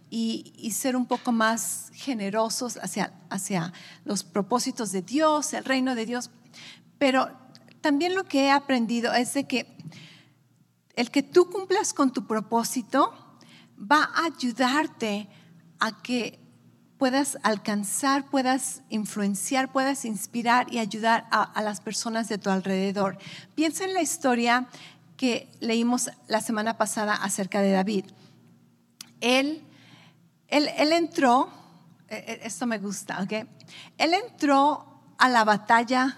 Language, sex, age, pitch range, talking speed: English, female, 40-59, 205-275 Hz, 130 wpm